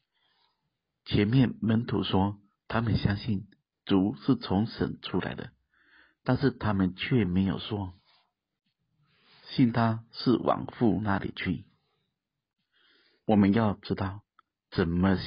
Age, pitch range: 50-69, 95-125 Hz